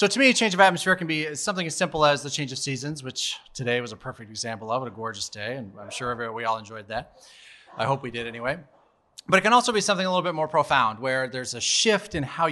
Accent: American